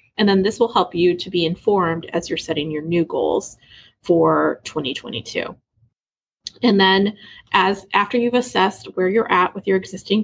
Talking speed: 170 wpm